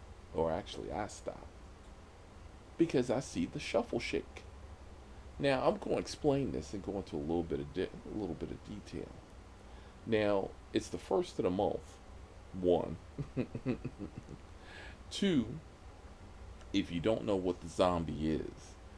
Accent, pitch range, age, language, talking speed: American, 85-95 Hz, 40-59, English, 135 wpm